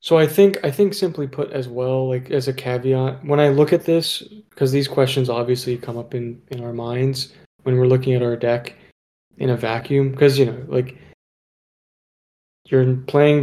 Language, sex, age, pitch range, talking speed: English, male, 20-39, 120-140 Hz, 190 wpm